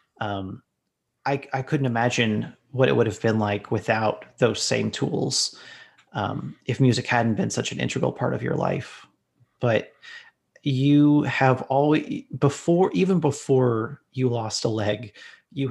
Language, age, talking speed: English, 30-49, 150 wpm